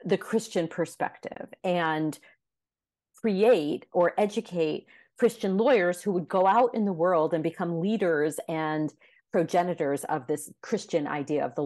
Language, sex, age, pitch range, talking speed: English, female, 40-59, 155-195 Hz, 140 wpm